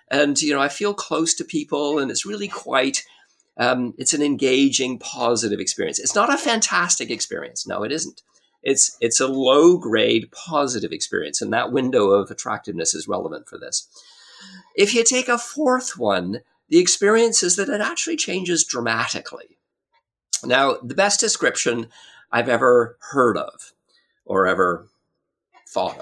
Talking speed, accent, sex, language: 150 wpm, American, male, English